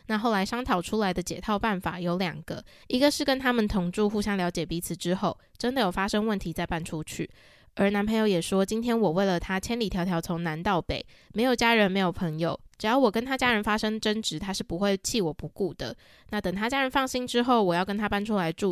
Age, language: 20-39, Chinese